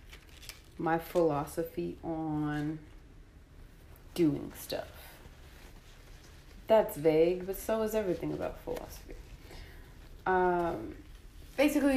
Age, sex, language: 20-39, female, English